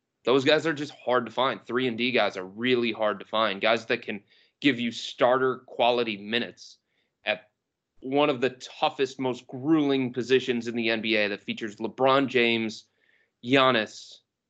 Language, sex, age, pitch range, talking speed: English, male, 30-49, 110-130 Hz, 165 wpm